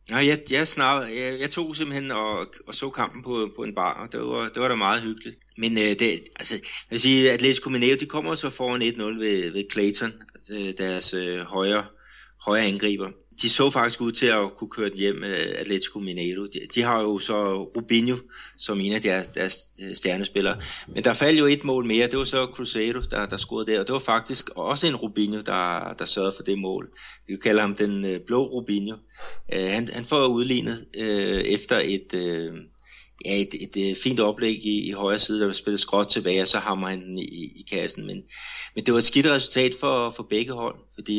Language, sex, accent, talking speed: Danish, male, native, 205 wpm